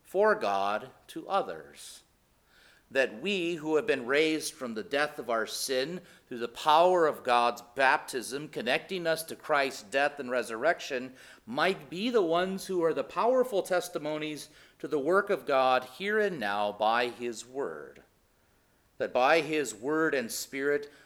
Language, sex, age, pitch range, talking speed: English, male, 40-59, 115-165 Hz, 155 wpm